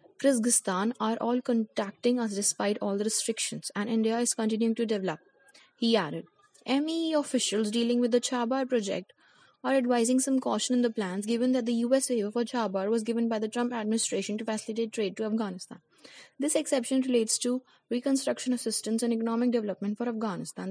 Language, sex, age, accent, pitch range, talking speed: English, female, 20-39, Indian, 215-245 Hz, 175 wpm